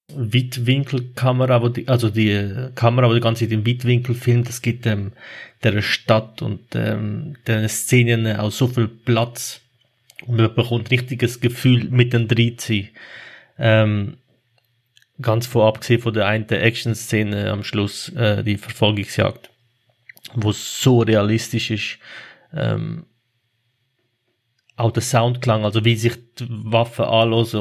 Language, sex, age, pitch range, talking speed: German, male, 30-49, 110-125 Hz, 125 wpm